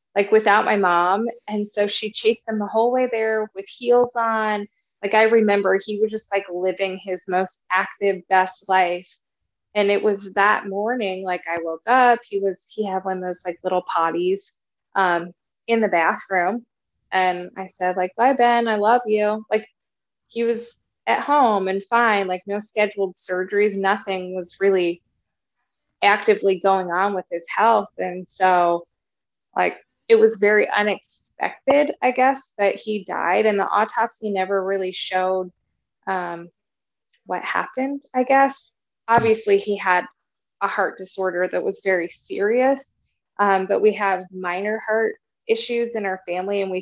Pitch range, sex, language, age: 185-220 Hz, female, English, 20-39